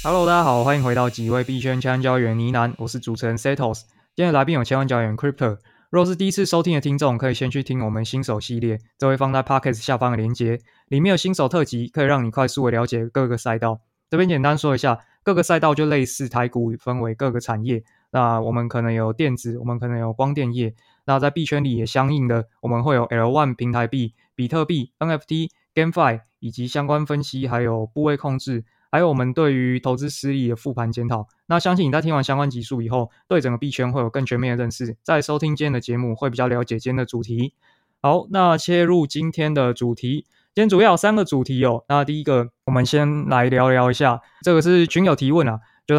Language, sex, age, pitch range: Chinese, male, 20-39, 120-150 Hz